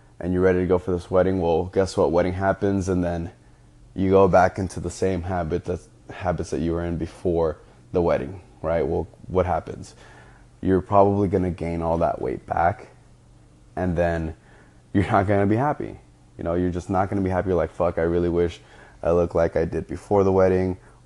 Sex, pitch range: male, 85-95 Hz